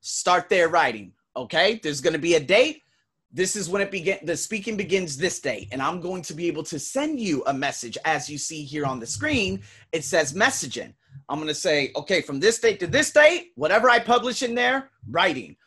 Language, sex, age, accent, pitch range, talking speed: English, male, 30-49, American, 155-235 Hz, 215 wpm